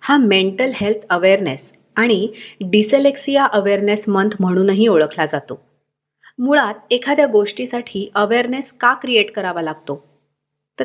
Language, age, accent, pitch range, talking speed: Marathi, 30-49, native, 165-225 Hz, 110 wpm